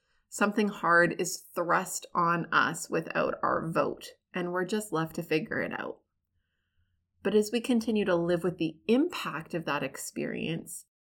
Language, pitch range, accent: English, 165-210 Hz, American